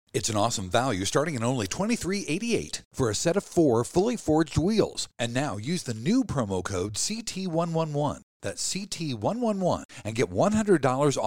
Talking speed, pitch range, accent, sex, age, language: 175 wpm, 110-160 Hz, American, male, 50-69, English